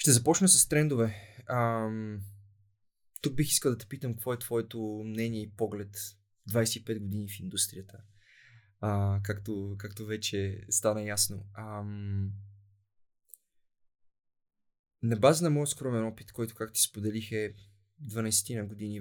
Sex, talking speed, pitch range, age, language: male, 135 wpm, 105-125 Hz, 20-39, Bulgarian